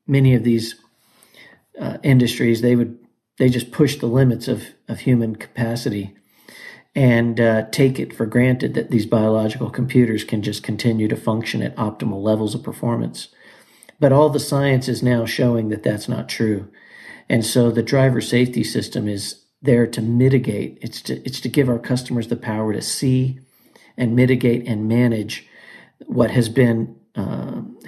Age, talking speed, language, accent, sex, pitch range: 50-69, 165 wpm, English, American, male, 115-130 Hz